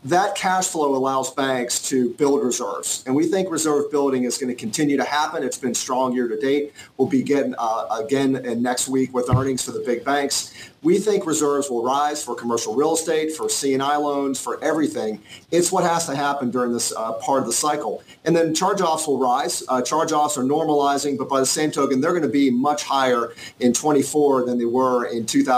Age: 50-69